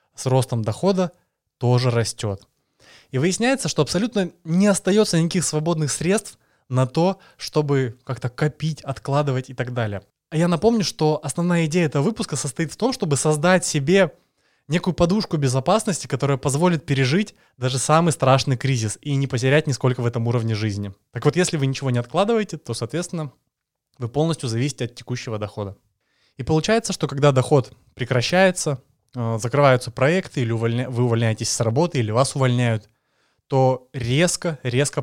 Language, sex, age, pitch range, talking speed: Russian, male, 20-39, 125-165 Hz, 155 wpm